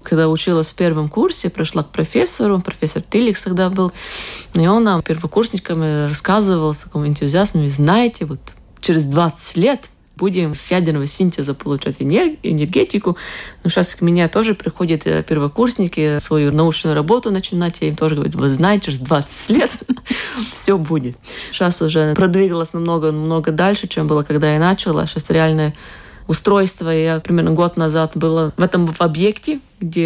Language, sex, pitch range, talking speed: Russian, female, 155-190 Hz, 155 wpm